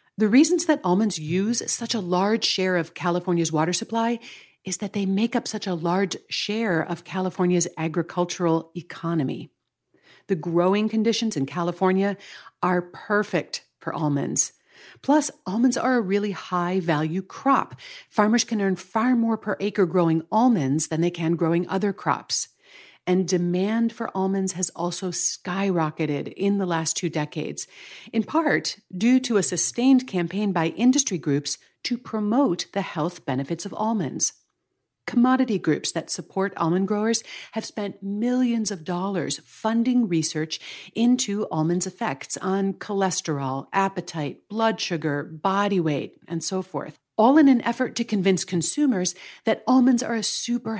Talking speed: 145 wpm